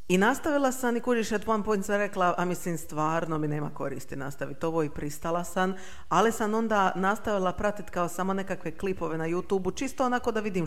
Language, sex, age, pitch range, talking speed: Croatian, female, 40-59, 160-225 Hz, 200 wpm